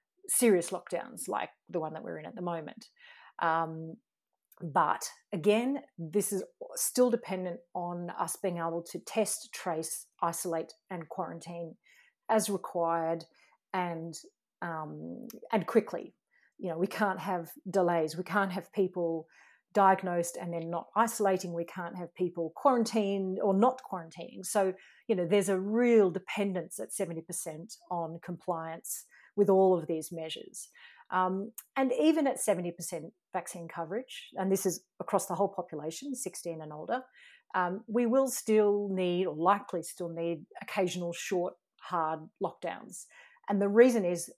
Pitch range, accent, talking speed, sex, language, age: 170-205 Hz, Australian, 145 wpm, female, English, 40-59